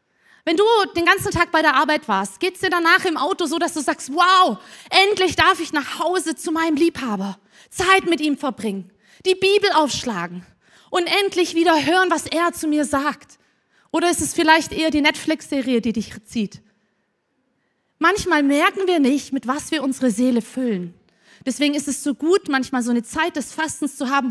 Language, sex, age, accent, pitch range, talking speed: German, female, 30-49, German, 255-340 Hz, 190 wpm